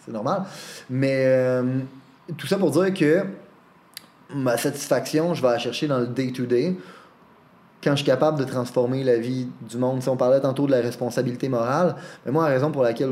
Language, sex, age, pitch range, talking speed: French, male, 20-39, 125-145 Hz, 190 wpm